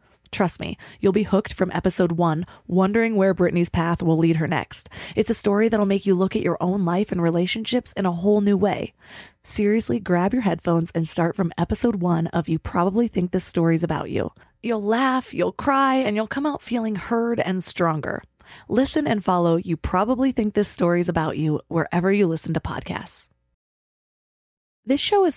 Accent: American